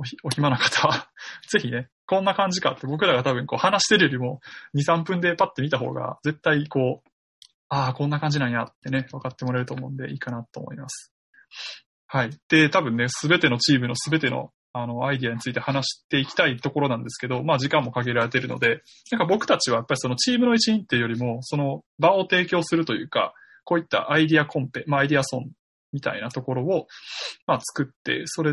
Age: 20-39